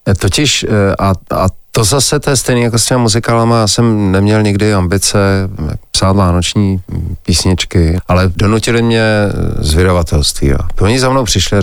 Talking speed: 150 wpm